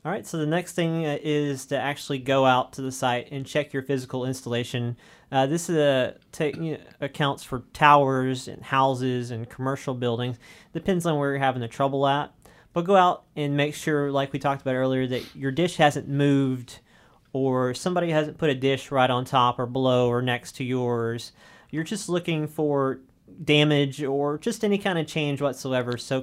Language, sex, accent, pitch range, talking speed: English, male, American, 125-145 Hz, 195 wpm